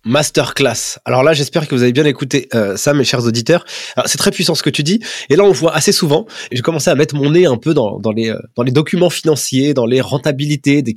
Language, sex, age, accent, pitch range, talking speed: French, male, 20-39, French, 135-180 Hz, 265 wpm